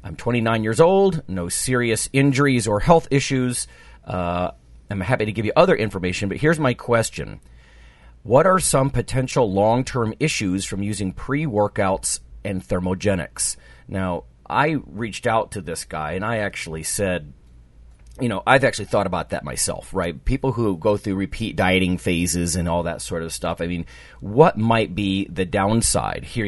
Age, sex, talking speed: 40-59, male, 170 wpm